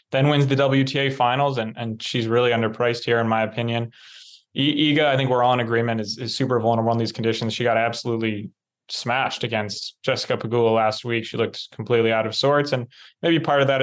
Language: English